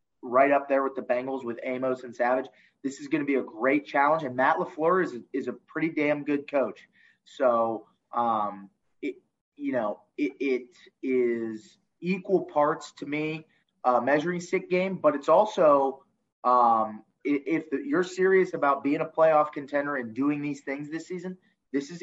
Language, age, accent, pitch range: English, 20-39, American, 130-180 Hz